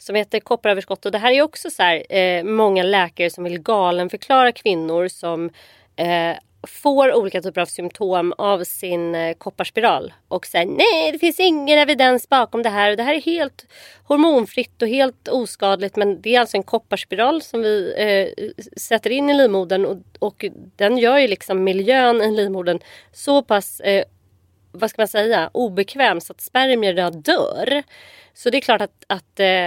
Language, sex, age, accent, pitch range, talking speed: Swedish, female, 30-49, native, 180-245 Hz, 180 wpm